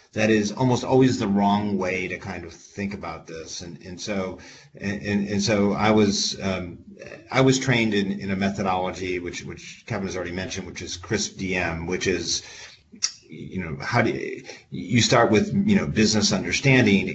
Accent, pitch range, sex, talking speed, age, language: American, 95-115 Hz, male, 180 wpm, 40-59, English